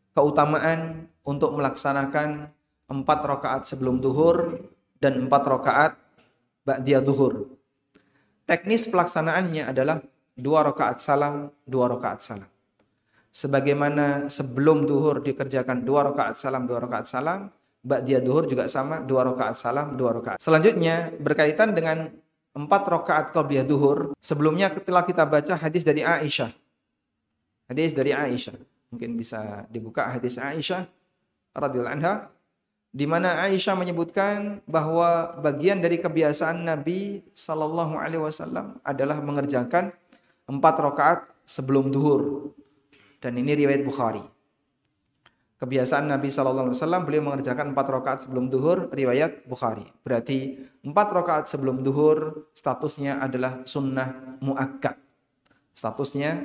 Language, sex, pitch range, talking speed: Indonesian, male, 130-160 Hz, 110 wpm